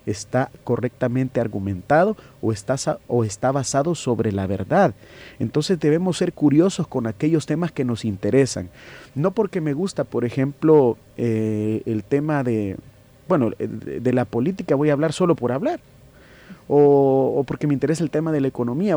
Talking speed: 160 wpm